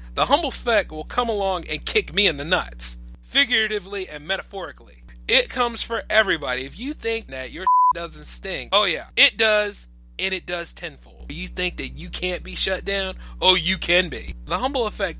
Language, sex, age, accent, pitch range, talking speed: English, male, 30-49, American, 140-195 Hz, 195 wpm